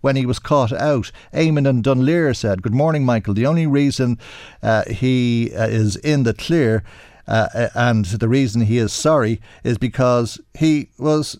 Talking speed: 175 wpm